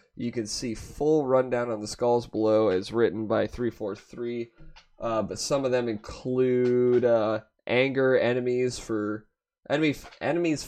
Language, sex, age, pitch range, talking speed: English, male, 20-39, 110-130 Hz, 145 wpm